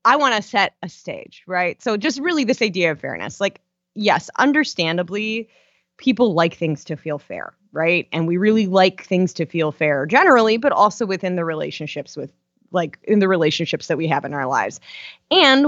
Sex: female